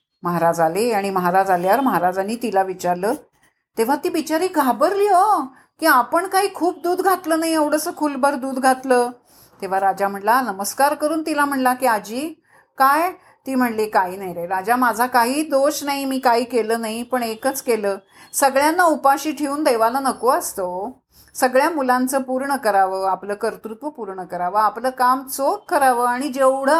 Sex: female